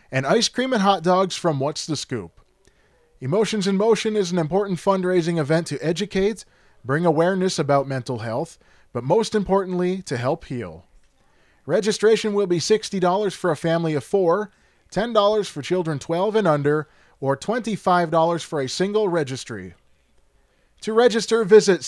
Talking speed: 150 wpm